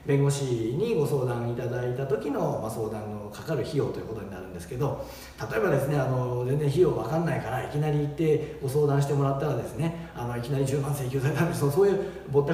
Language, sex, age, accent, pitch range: Japanese, male, 40-59, native, 120-165 Hz